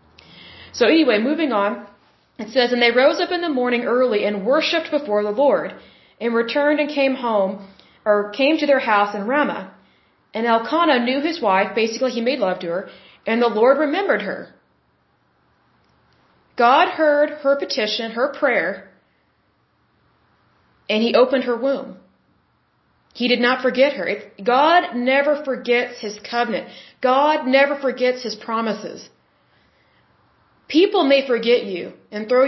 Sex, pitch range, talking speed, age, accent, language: female, 215-275 Hz, 145 wpm, 30-49, American, Bengali